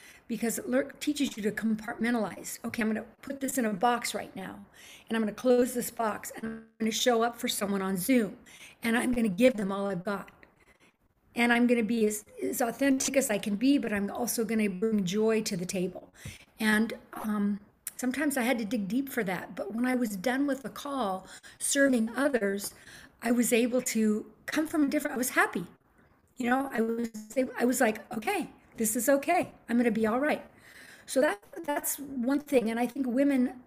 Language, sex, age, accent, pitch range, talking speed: English, female, 50-69, American, 225-270 Hz, 205 wpm